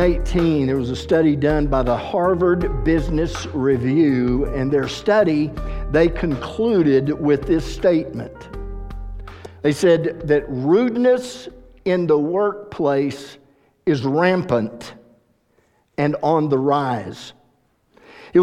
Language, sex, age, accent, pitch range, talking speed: English, male, 50-69, American, 140-190 Hz, 105 wpm